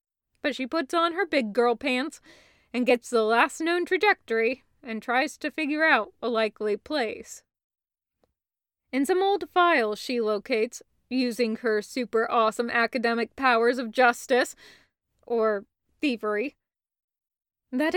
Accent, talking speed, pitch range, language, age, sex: American, 130 wpm, 230-325 Hz, English, 20-39, female